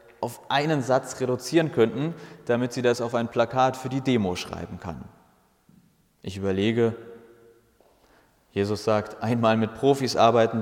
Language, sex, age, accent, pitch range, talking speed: English, male, 30-49, German, 100-120 Hz, 135 wpm